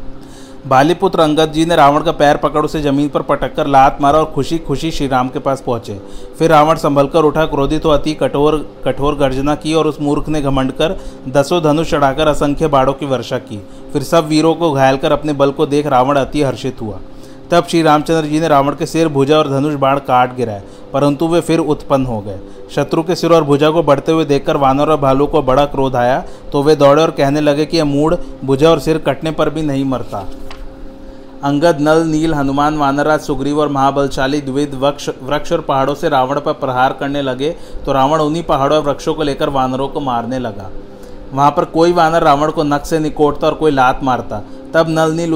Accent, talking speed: native, 215 wpm